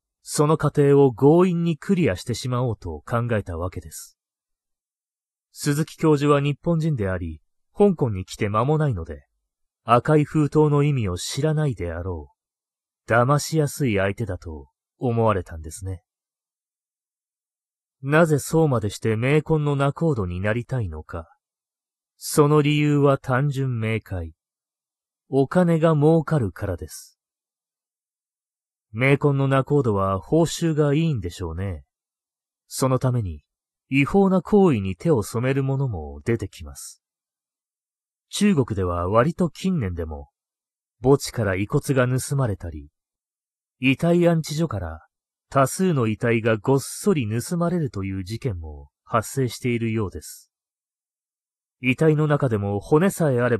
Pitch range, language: 95-150 Hz, Japanese